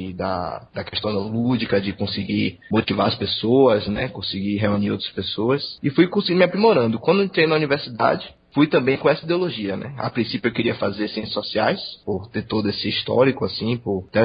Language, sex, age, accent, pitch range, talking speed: Portuguese, male, 20-39, Brazilian, 105-135 Hz, 185 wpm